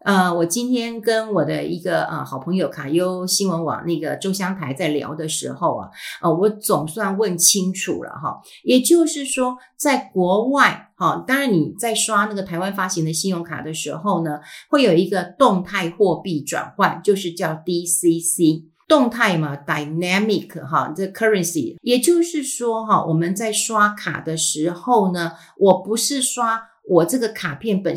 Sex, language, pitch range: female, Chinese, 170-230 Hz